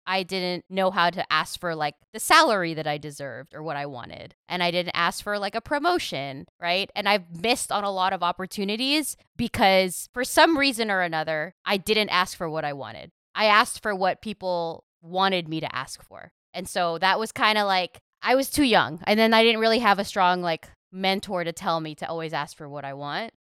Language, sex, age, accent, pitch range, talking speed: English, female, 20-39, American, 165-210 Hz, 225 wpm